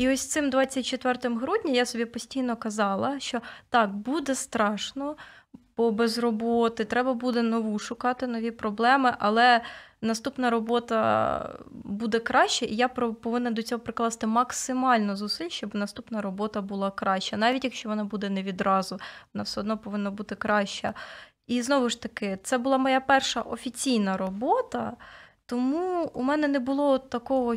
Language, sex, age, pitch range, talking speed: Ukrainian, female, 20-39, 215-250 Hz, 150 wpm